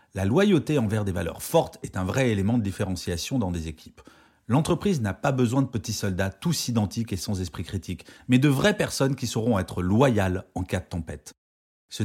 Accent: French